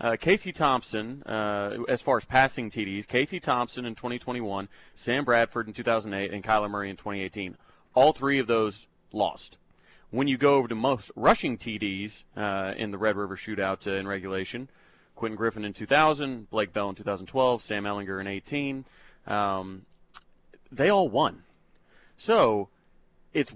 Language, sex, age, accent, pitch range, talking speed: English, male, 30-49, American, 105-130 Hz, 155 wpm